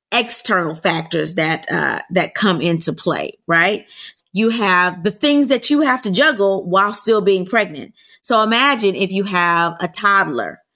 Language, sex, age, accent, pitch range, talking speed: English, female, 30-49, American, 205-270 Hz, 160 wpm